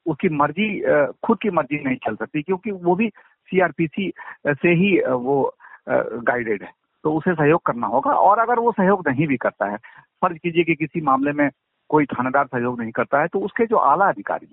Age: 50-69